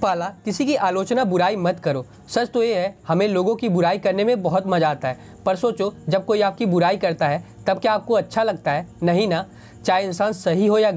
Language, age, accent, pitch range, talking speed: Hindi, 20-39, native, 170-215 Hz, 230 wpm